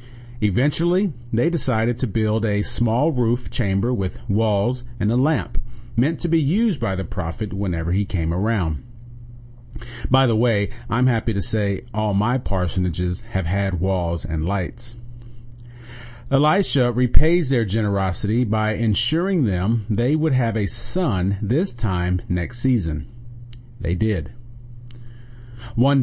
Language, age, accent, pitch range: English, 40-59, American, 100-120 Hz